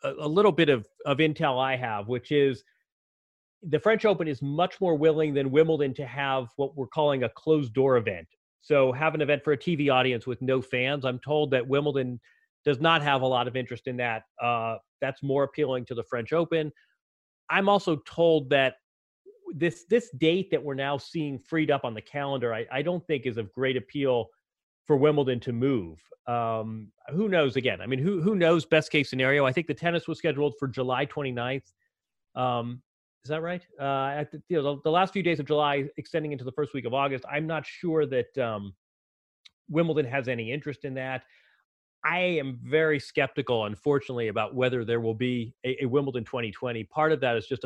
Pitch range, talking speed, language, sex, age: 125-155 Hz, 205 wpm, English, male, 30-49